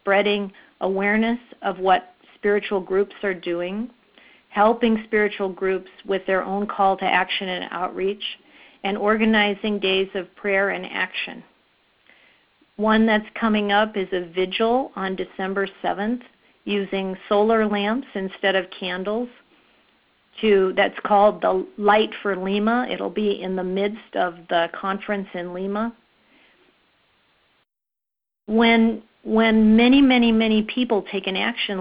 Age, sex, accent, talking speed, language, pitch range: 50-69, female, American, 130 wpm, English, 185-220 Hz